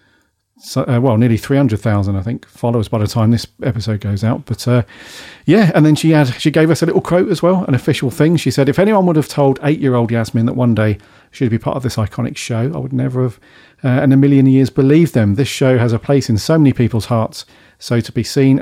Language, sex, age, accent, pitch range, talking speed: English, male, 40-59, British, 110-135 Hz, 255 wpm